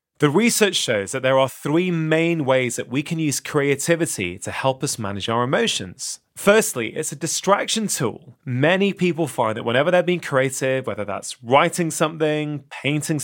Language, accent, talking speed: English, British, 170 wpm